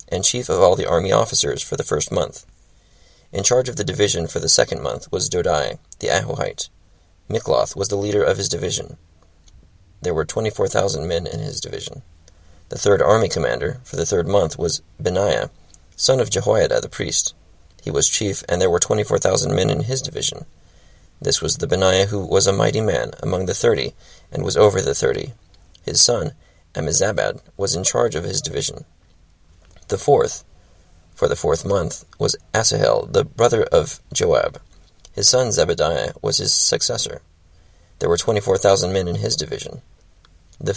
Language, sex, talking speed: English, male, 175 wpm